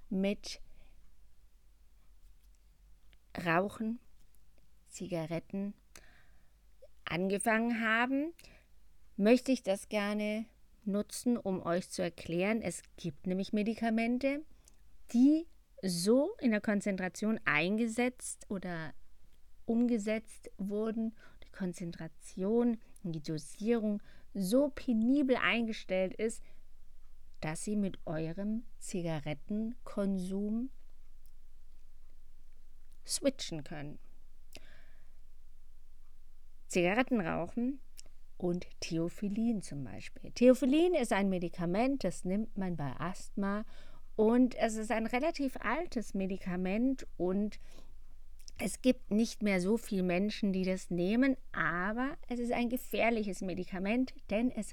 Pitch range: 170-230 Hz